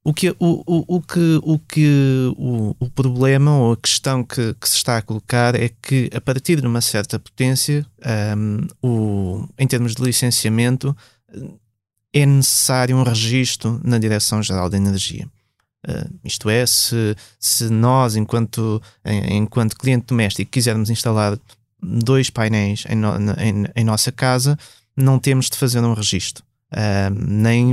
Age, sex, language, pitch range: 20-39, male, Portuguese, 110-135 Hz